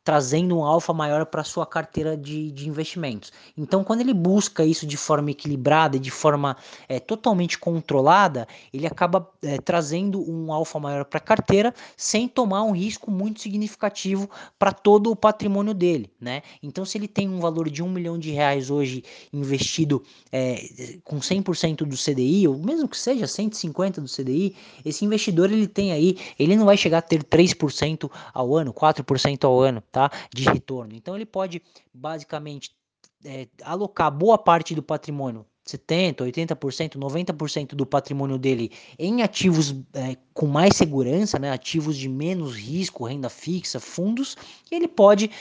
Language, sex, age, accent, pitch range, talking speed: Portuguese, male, 20-39, Brazilian, 145-185 Hz, 160 wpm